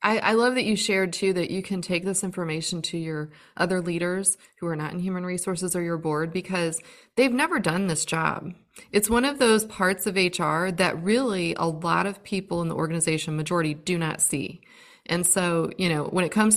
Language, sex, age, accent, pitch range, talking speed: English, female, 30-49, American, 170-200 Hz, 215 wpm